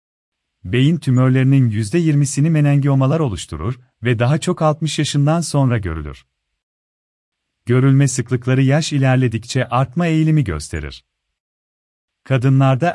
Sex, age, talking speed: male, 40-59, 95 wpm